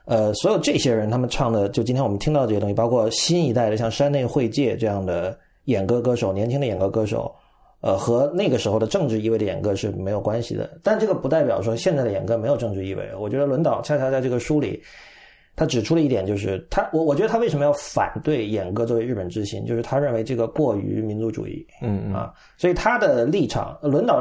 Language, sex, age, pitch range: Chinese, male, 30-49, 105-145 Hz